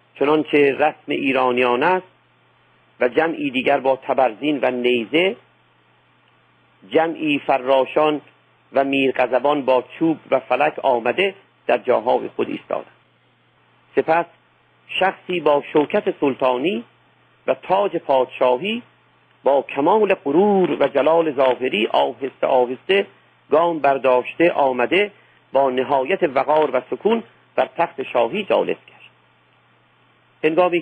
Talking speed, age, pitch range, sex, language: 105 wpm, 50-69, 130-170 Hz, male, Persian